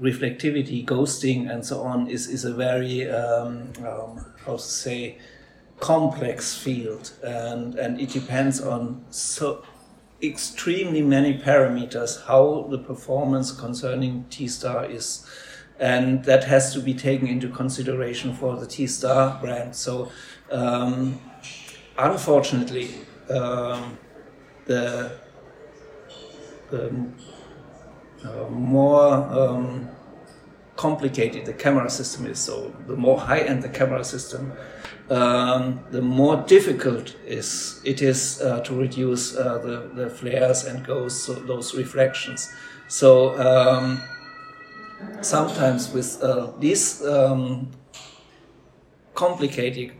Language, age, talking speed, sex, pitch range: Romanian, 60-79, 110 wpm, male, 125-135 Hz